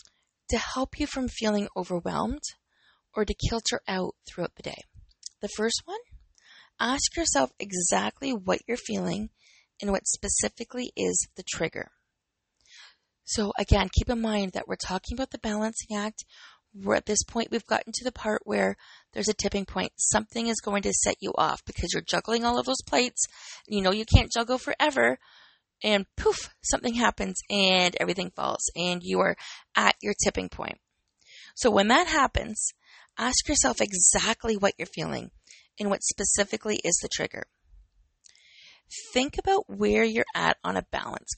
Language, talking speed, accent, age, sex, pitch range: English, 165 wpm, American, 20-39, female, 200-245 Hz